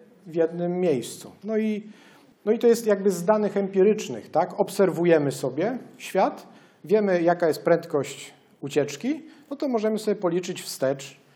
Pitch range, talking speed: 135-180 Hz, 145 wpm